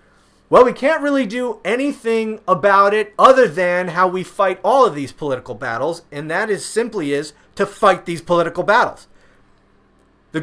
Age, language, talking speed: 30-49, English, 165 wpm